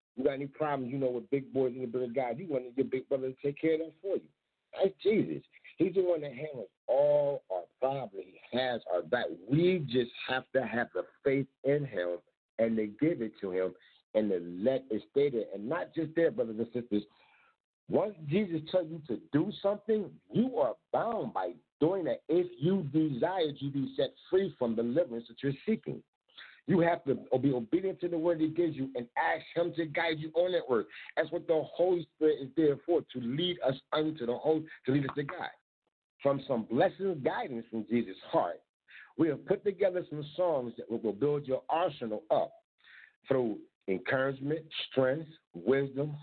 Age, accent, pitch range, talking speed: 50-69, American, 130-170 Hz, 200 wpm